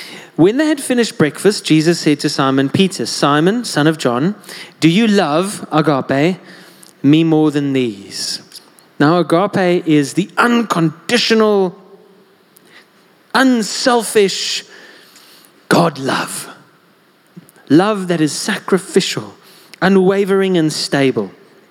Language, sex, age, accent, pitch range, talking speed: English, male, 30-49, British, 150-195 Hz, 100 wpm